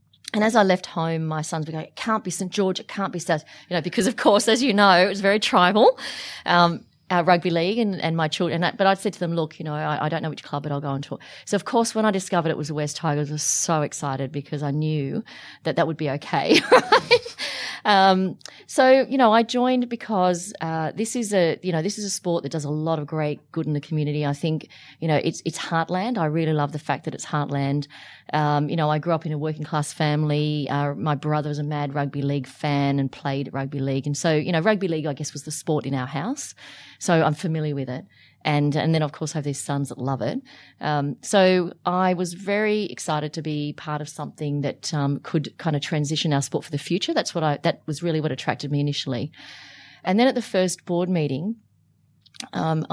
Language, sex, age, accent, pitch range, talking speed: English, female, 30-49, Australian, 150-190 Hz, 245 wpm